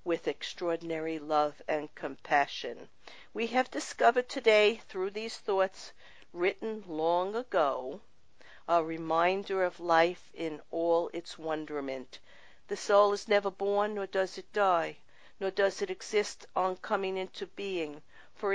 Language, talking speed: English, 135 wpm